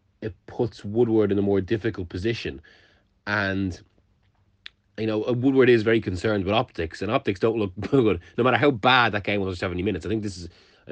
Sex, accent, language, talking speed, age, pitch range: male, Irish, English, 205 wpm, 30-49, 90-110 Hz